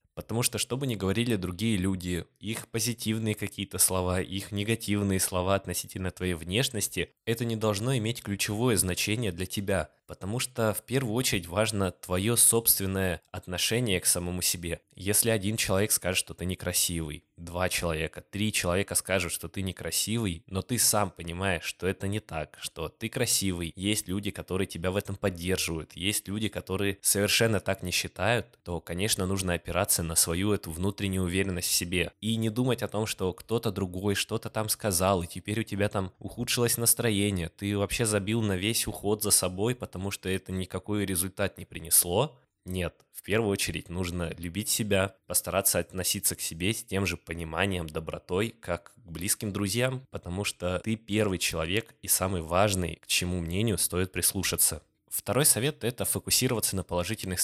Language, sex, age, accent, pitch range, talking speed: Russian, male, 20-39, native, 90-110 Hz, 170 wpm